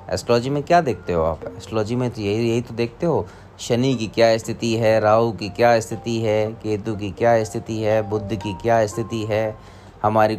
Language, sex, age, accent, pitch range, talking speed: Hindi, male, 30-49, native, 100-125 Hz, 200 wpm